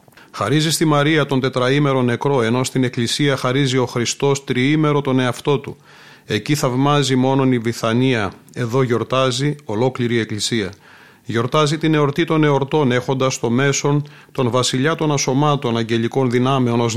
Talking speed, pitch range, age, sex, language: 145 wpm, 120-145 Hz, 30-49, male, Greek